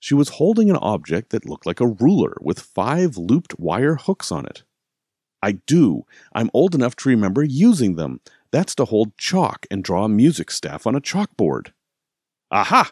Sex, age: male, 40-59